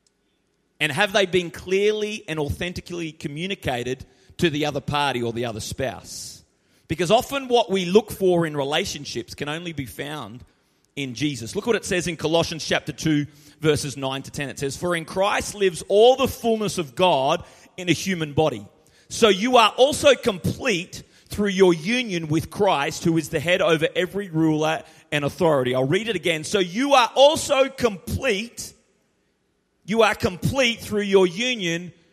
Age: 30-49